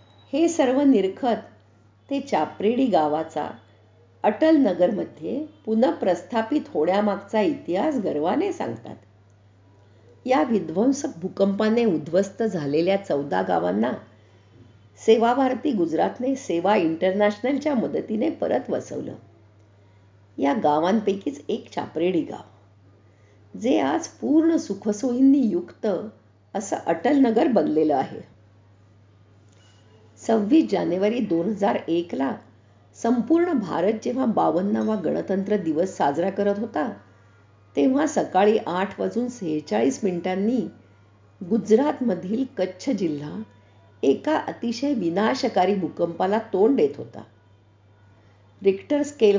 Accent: native